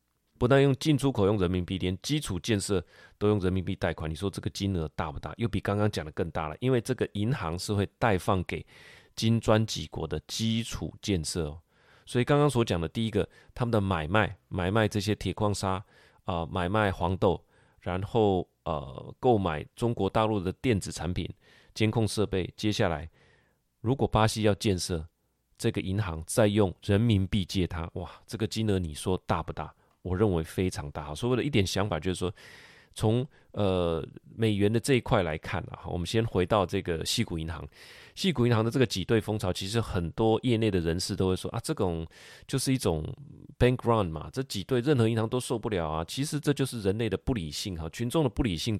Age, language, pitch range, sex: 20-39, Chinese, 90-115 Hz, male